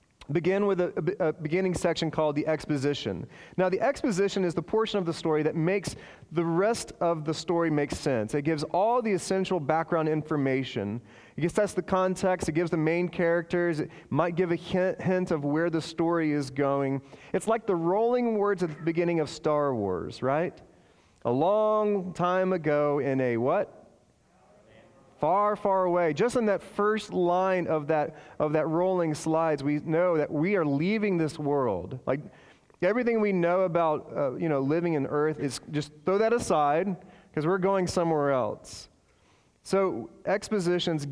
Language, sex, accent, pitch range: English, male, American, 150-185 Hz